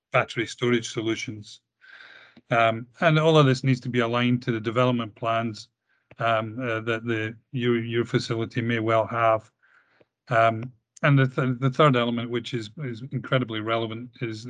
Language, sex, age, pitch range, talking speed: English, male, 40-59, 110-125 Hz, 160 wpm